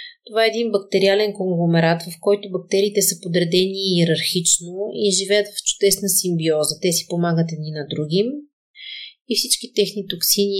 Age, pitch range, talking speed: 30-49, 170-205 Hz, 145 wpm